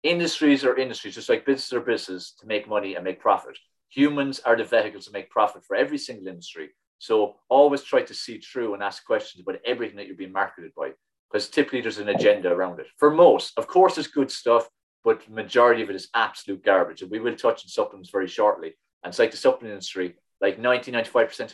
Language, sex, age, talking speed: English, male, 30-49, 220 wpm